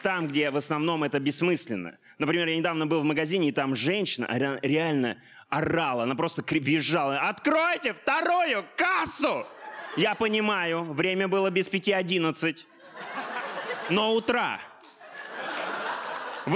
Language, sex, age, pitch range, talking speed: Russian, male, 20-39, 155-210 Hz, 120 wpm